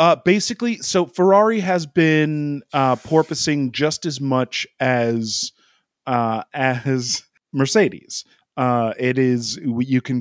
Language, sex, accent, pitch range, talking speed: English, male, American, 115-135 Hz, 120 wpm